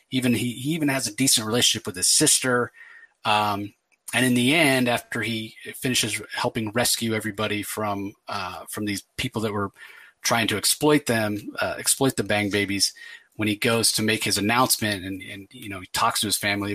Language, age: English, 30-49